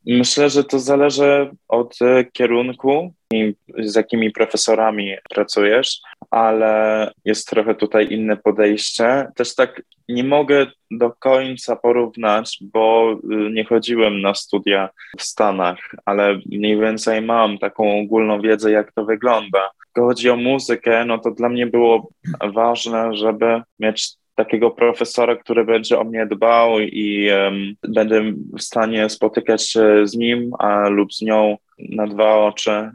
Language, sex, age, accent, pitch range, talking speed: Polish, male, 20-39, native, 110-120 Hz, 140 wpm